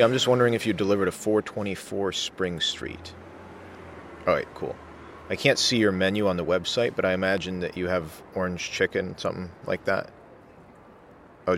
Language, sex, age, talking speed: English, male, 30-49, 165 wpm